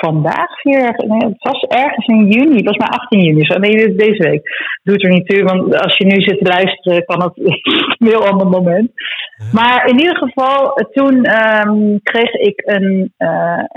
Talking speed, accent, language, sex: 190 wpm, Dutch, English, female